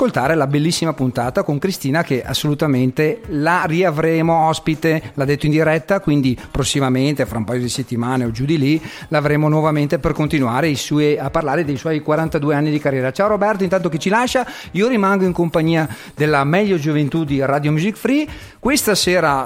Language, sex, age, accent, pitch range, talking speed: Italian, male, 40-59, native, 135-175 Hz, 180 wpm